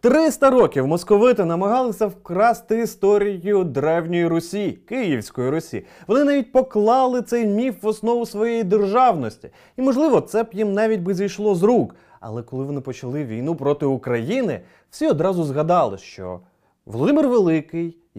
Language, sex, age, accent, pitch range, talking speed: Ukrainian, male, 30-49, native, 165-220 Hz, 140 wpm